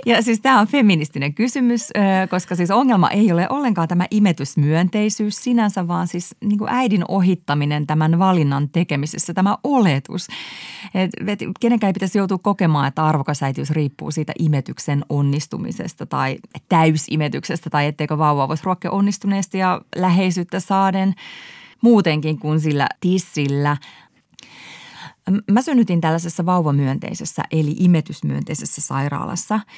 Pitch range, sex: 150-195 Hz, female